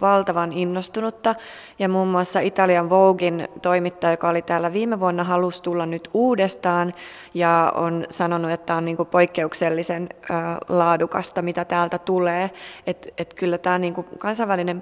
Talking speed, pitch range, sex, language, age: 140 wpm, 170-190 Hz, female, Finnish, 20-39